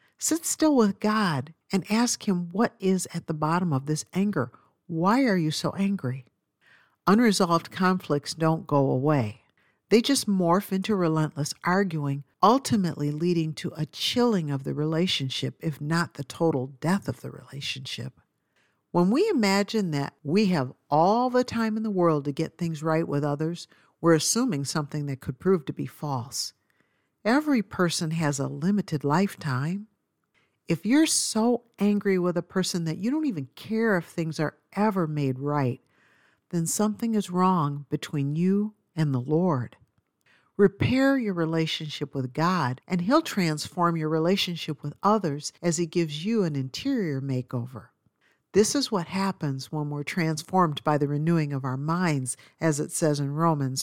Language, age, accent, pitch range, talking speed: English, 50-69, American, 145-195 Hz, 160 wpm